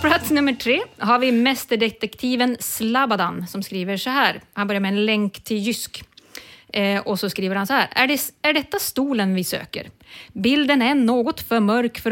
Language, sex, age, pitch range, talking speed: English, female, 30-49, 210-280 Hz, 180 wpm